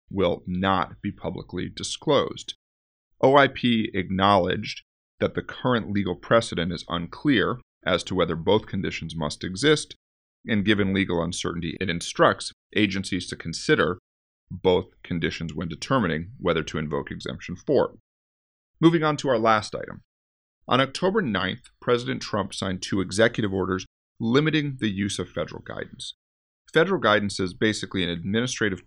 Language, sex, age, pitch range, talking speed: English, male, 40-59, 85-110 Hz, 135 wpm